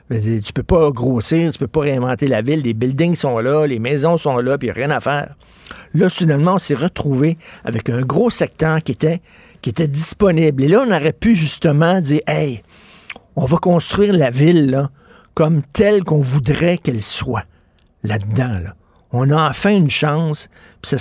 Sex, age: male, 60-79